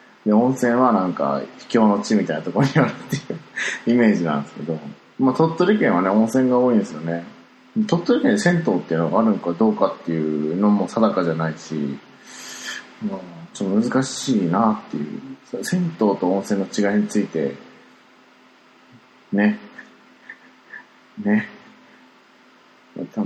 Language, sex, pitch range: Japanese, male, 85-125 Hz